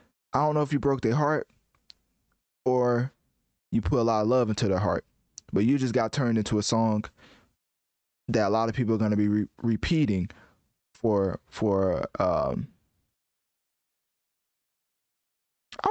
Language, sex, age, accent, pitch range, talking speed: English, male, 20-39, American, 105-135 Hz, 155 wpm